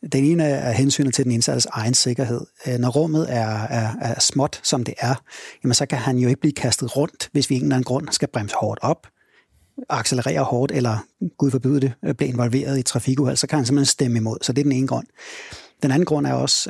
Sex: male